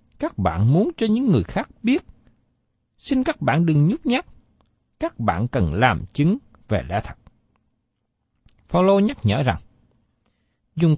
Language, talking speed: Vietnamese, 150 wpm